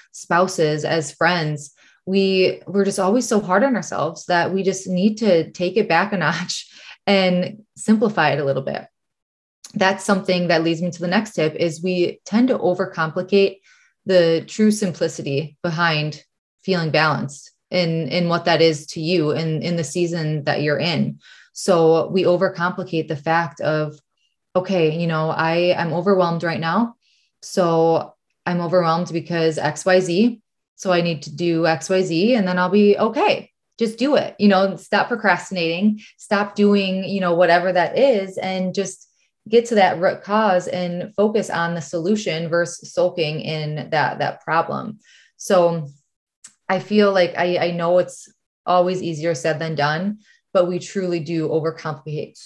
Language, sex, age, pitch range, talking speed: English, female, 20-39, 165-195 Hz, 160 wpm